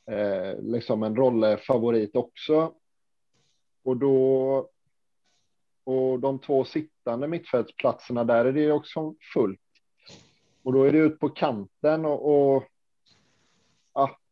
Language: Swedish